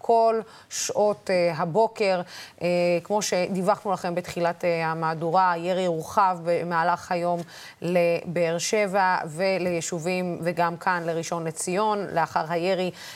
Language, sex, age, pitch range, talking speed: Hebrew, female, 20-39, 175-210 Hz, 95 wpm